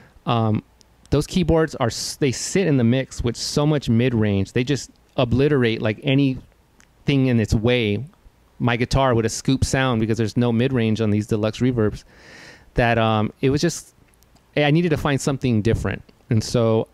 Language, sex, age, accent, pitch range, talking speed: English, male, 30-49, American, 110-130 Hz, 180 wpm